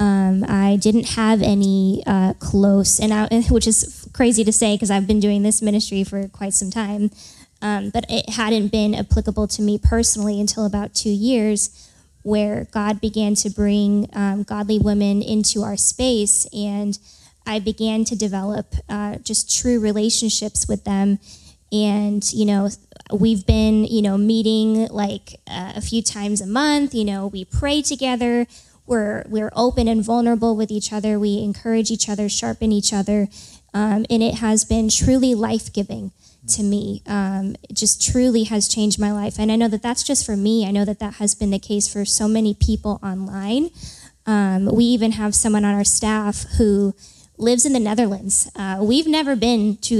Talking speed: 180 wpm